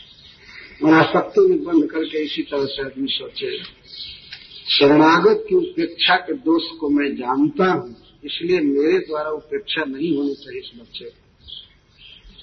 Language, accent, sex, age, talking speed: Hindi, native, male, 50-69, 120 wpm